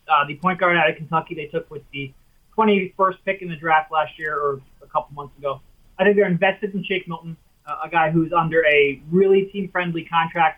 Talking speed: 220 wpm